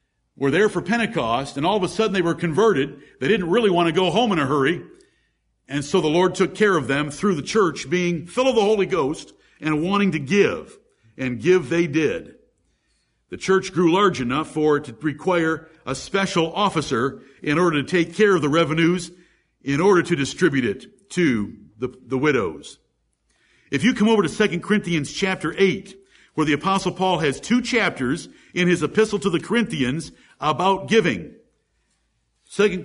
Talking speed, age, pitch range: 185 wpm, 50-69, 155-200 Hz